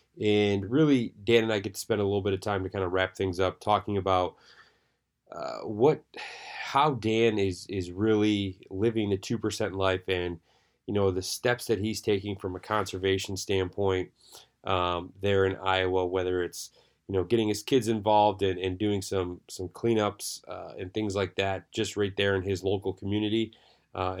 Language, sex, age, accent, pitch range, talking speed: English, male, 20-39, American, 95-110 Hz, 185 wpm